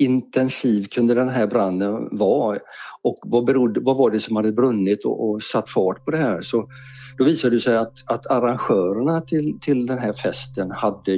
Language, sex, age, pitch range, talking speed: Swedish, male, 50-69, 100-130 Hz, 190 wpm